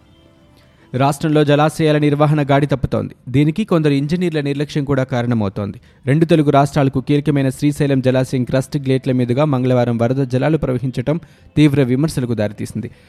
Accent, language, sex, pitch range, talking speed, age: native, Telugu, male, 125-150 Hz, 125 wpm, 20-39